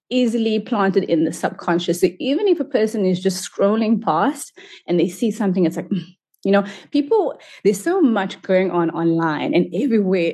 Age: 20-39